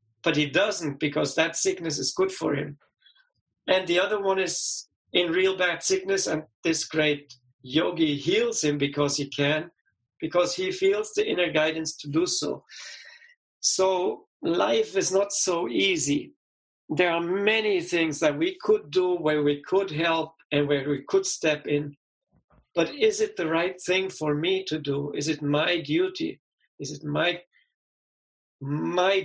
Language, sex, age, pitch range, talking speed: English, male, 50-69, 150-190 Hz, 160 wpm